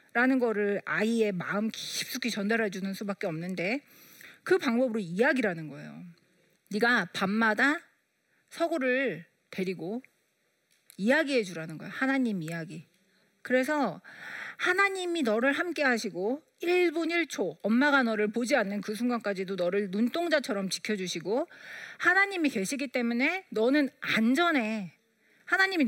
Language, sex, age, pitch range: Korean, female, 40-59, 195-275 Hz